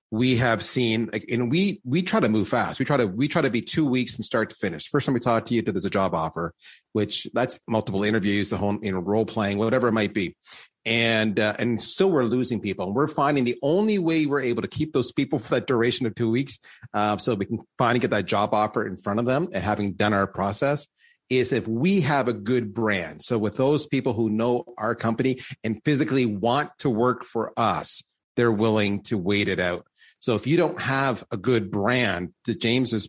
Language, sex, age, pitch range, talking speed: English, male, 30-49, 105-125 Hz, 235 wpm